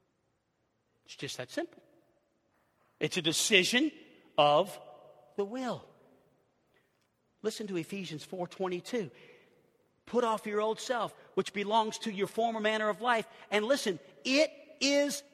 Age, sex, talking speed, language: 50-69, male, 120 wpm, English